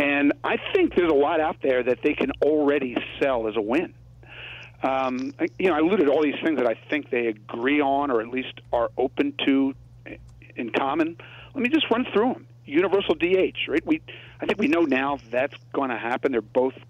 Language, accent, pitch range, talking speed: English, American, 120-155 Hz, 215 wpm